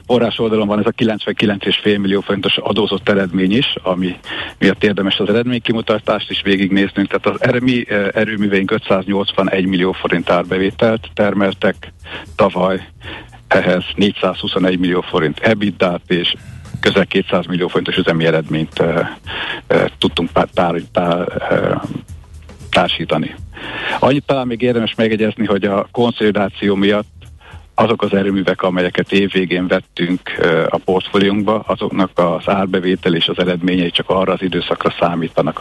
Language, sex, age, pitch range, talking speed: Hungarian, male, 50-69, 90-105 Hz, 125 wpm